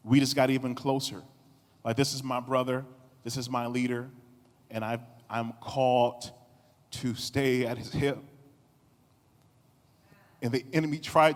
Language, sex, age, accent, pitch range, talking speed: English, male, 40-59, American, 115-135 Hz, 145 wpm